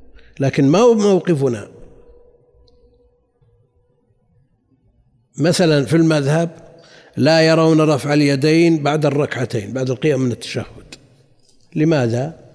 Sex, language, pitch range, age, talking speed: male, Arabic, 120-160 Hz, 60-79, 85 wpm